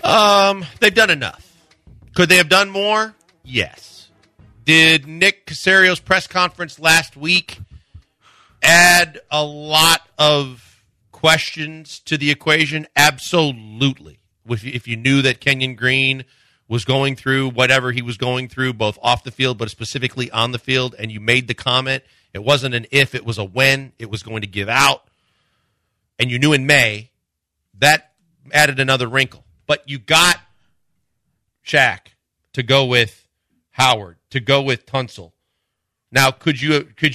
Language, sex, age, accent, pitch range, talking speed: English, male, 40-59, American, 115-150 Hz, 150 wpm